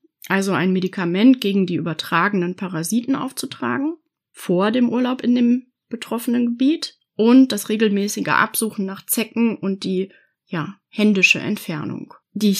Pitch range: 185-260 Hz